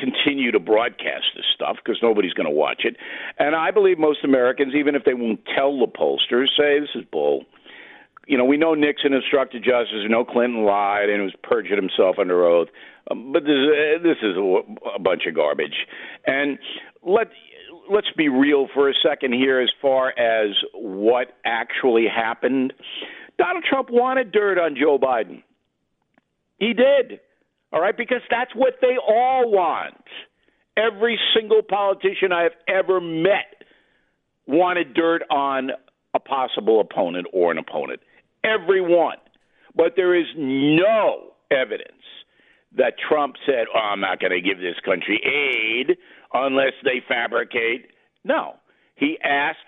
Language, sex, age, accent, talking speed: English, male, 50-69, American, 150 wpm